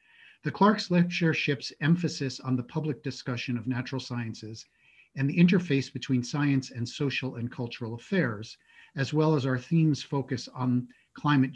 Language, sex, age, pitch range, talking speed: English, male, 50-69, 120-150 Hz, 150 wpm